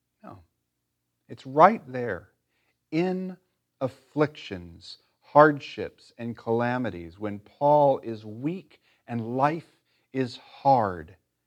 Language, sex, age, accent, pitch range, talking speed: English, male, 40-59, American, 90-145 Hz, 85 wpm